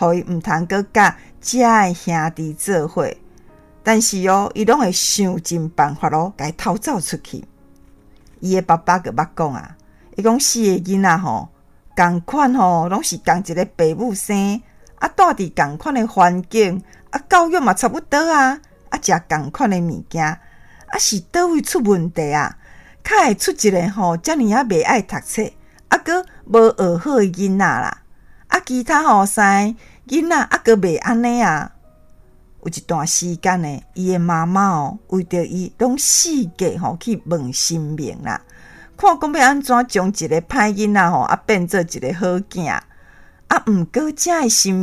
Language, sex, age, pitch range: Chinese, female, 50-69, 170-240 Hz